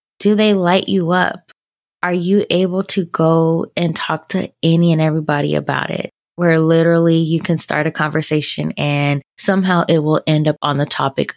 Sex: female